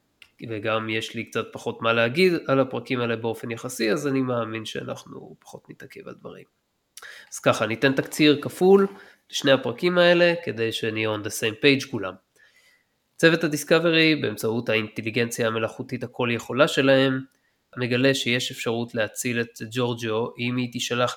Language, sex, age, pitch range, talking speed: Hebrew, male, 20-39, 110-140 Hz, 150 wpm